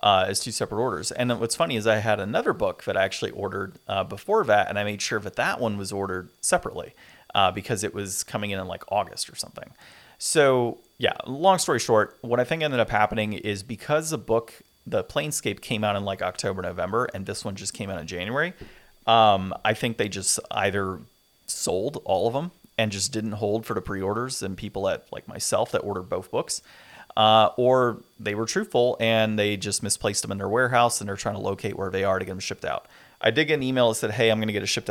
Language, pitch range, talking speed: English, 100-120 Hz, 235 wpm